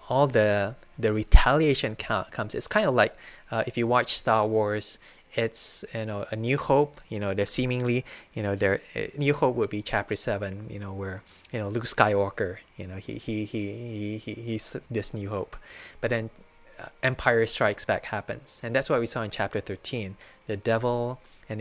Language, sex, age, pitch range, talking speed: English, male, 20-39, 105-125 Hz, 190 wpm